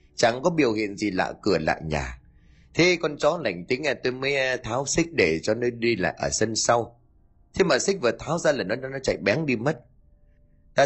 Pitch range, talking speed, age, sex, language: 90-135 Hz, 230 wpm, 20-39, male, Vietnamese